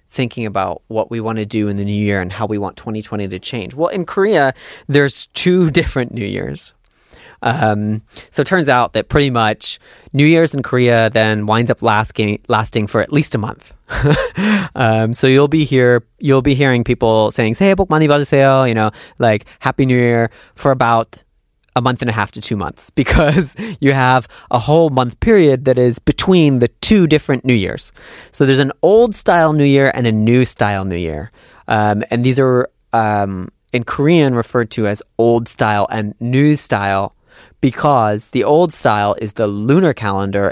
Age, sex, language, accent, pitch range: 30-49, male, Korean, American, 105-140 Hz